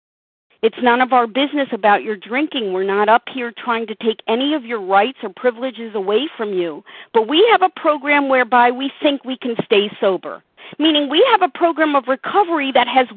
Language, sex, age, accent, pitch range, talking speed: English, female, 50-69, American, 235-310 Hz, 205 wpm